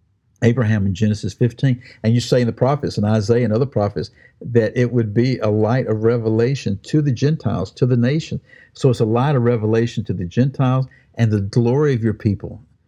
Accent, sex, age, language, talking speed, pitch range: American, male, 60-79, English, 205 wpm, 105-130 Hz